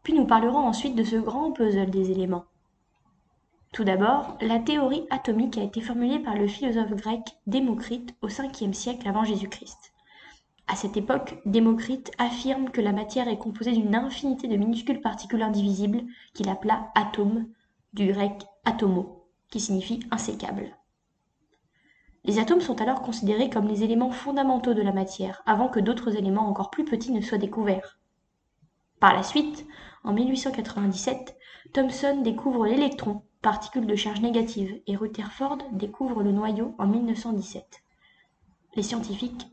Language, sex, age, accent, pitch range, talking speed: French, female, 20-39, French, 210-255 Hz, 145 wpm